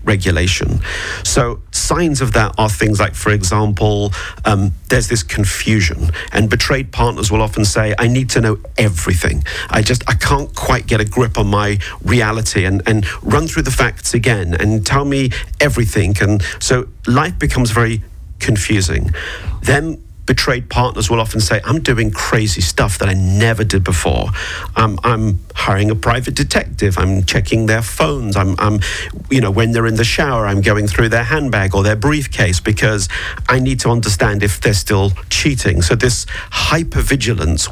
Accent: British